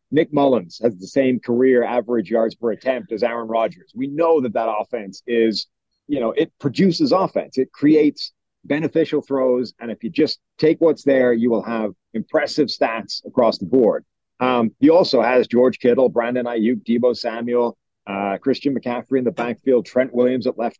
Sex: male